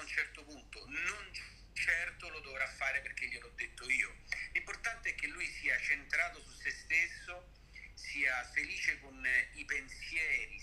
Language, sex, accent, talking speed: Italian, male, native, 160 wpm